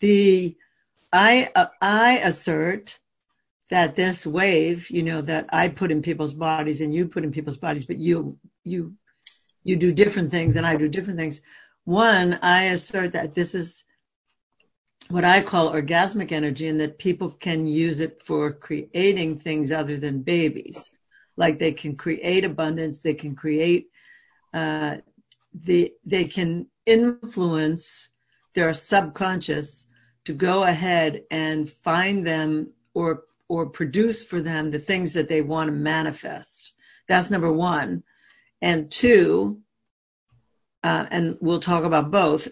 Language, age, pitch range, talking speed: English, 60-79, 155-180 Hz, 145 wpm